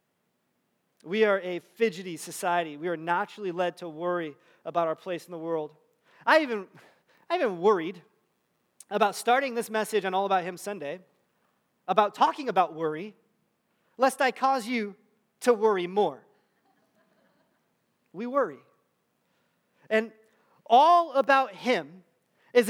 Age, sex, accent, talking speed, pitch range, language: 30-49, male, American, 125 wpm, 195-265 Hz, English